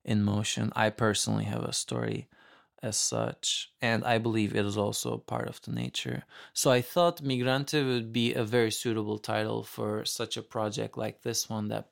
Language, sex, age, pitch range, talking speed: English, male, 20-39, 105-120 Hz, 185 wpm